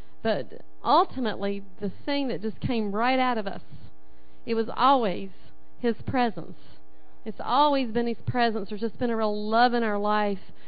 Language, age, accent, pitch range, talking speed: English, 40-59, American, 215-260 Hz, 170 wpm